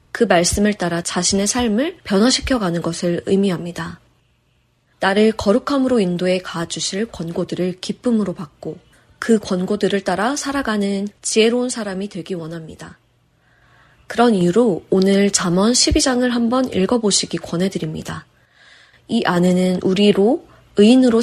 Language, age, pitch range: Korean, 20-39, 185-230 Hz